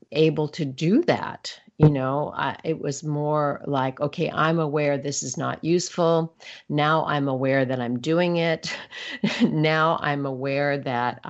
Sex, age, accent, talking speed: female, 50-69, American, 150 wpm